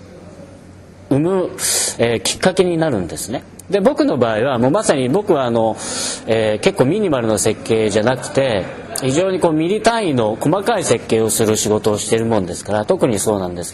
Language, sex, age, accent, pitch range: Japanese, male, 40-59, native, 105-155 Hz